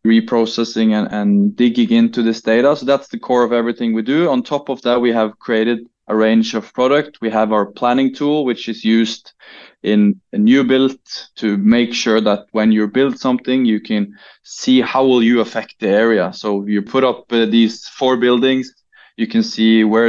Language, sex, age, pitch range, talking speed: English, male, 20-39, 110-125 Hz, 200 wpm